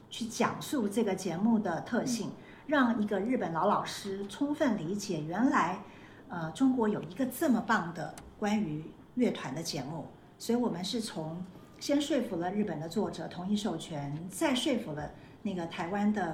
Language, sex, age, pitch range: Chinese, female, 50-69, 170-225 Hz